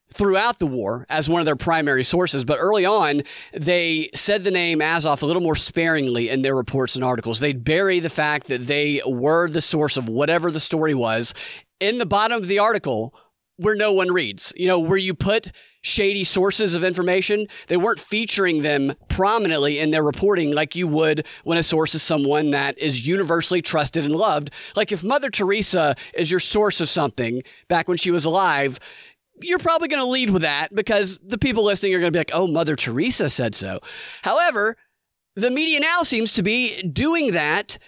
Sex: male